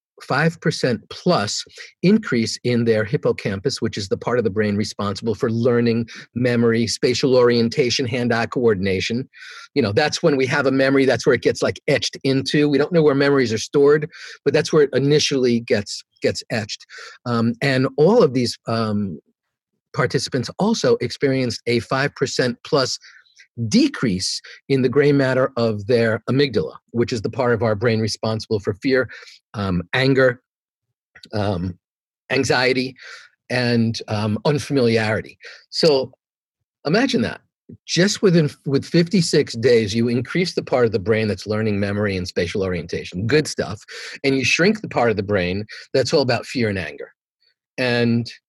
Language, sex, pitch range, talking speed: English, male, 110-140 Hz, 160 wpm